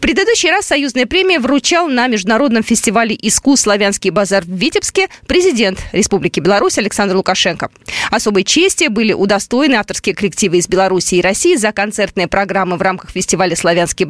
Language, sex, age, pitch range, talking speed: Russian, female, 20-39, 190-295 Hz, 155 wpm